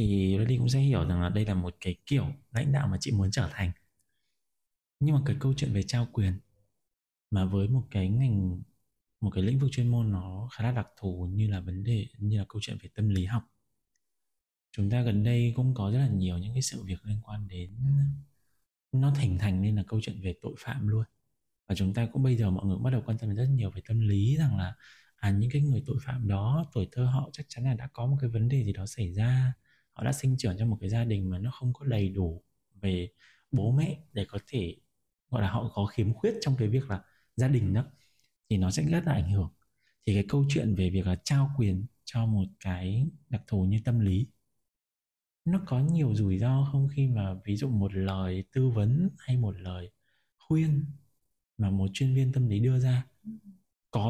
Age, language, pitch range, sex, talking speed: 20-39, Vietnamese, 95-130 Hz, male, 235 wpm